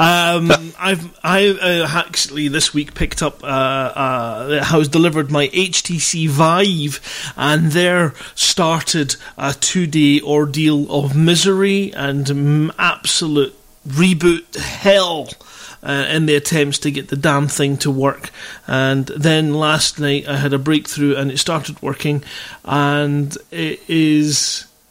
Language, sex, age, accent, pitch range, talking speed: English, male, 30-49, British, 145-180 Hz, 130 wpm